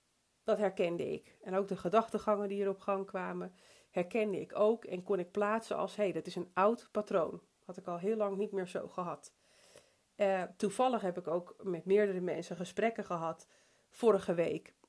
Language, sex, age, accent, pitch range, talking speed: Dutch, female, 40-59, Dutch, 175-205 Hz, 190 wpm